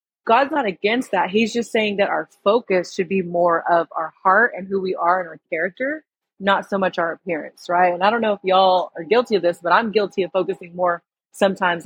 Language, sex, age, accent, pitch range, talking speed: English, female, 30-49, American, 180-235 Hz, 235 wpm